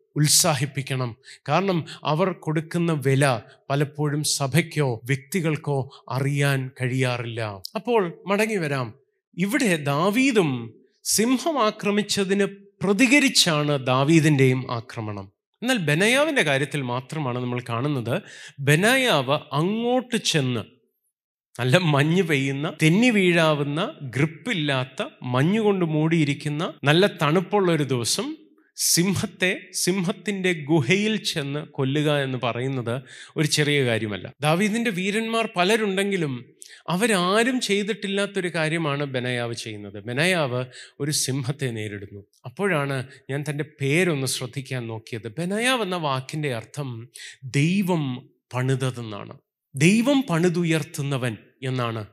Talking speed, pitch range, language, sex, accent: 90 wpm, 130-190 Hz, Malayalam, male, native